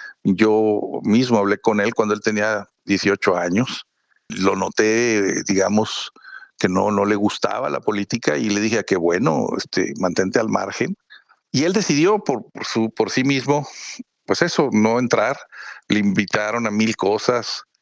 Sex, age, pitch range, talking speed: male, 50-69, 100-135 Hz, 160 wpm